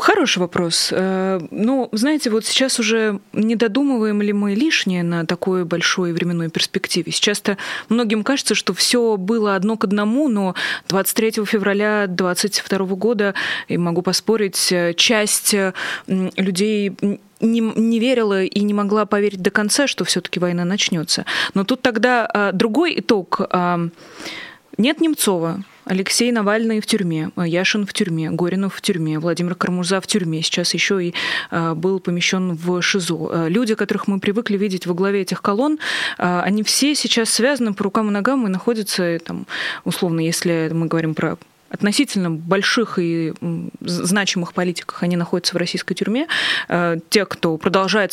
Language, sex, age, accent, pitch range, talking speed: Russian, female, 20-39, native, 175-220 Hz, 145 wpm